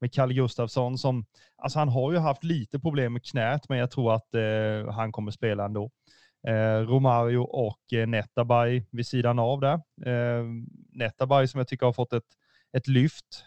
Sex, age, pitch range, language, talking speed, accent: male, 30-49, 115-135 Hz, Swedish, 185 wpm, native